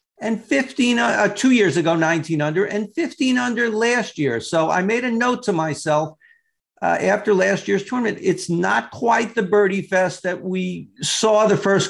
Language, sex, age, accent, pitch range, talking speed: English, male, 50-69, American, 160-210 Hz, 180 wpm